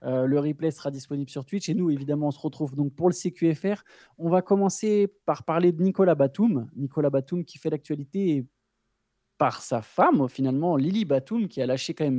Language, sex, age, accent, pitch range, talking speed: French, male, 20-39, French, 130-170 Hz, 200 wpm